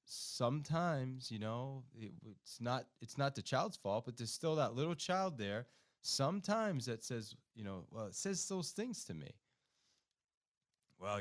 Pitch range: 100-140 Hz